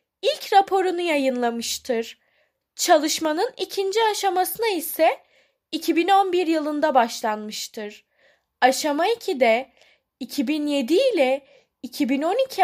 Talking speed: 70 wpm